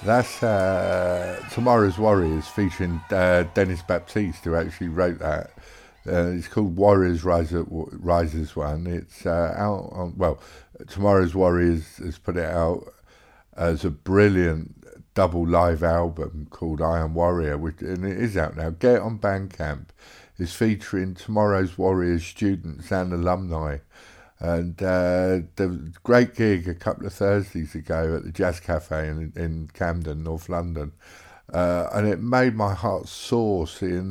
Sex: male